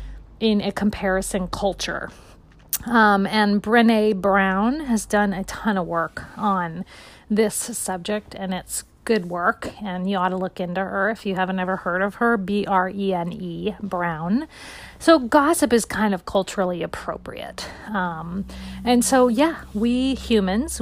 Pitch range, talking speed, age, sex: 185-230 Hz, 145 wpm, 40-59, female